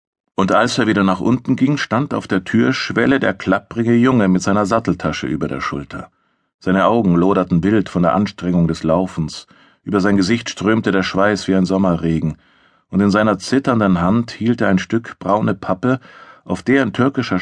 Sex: male